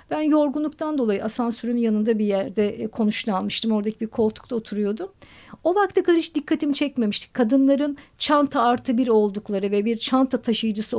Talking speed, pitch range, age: 140 wpm, 220-280 Hz, 50-69